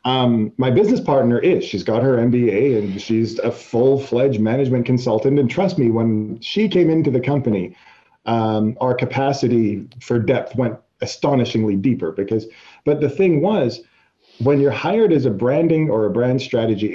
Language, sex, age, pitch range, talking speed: English, male, 40-59, 115-150 Hz, 170 wpm